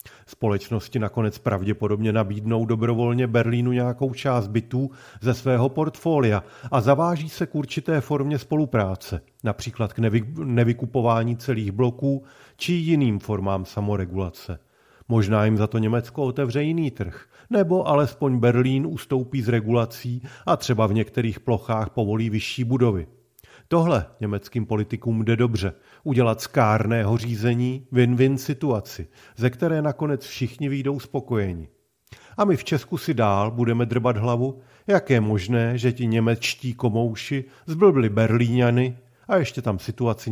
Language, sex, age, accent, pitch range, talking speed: Czech, male, 40-59, native, 110-135 Hz, 130 wpm